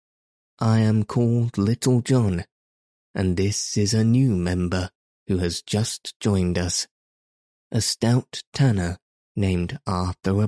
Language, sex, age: English, male, 20-39